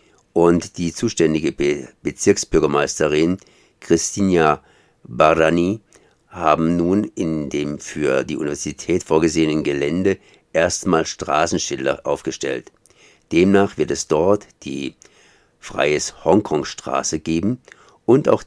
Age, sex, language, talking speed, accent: 50-69, male, German, 95 wpm, German